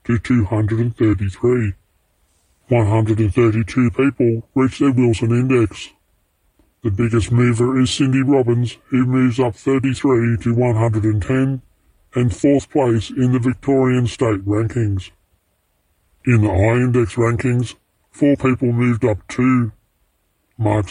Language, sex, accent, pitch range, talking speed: English, female, American, 110-125 Hz, 110 wpm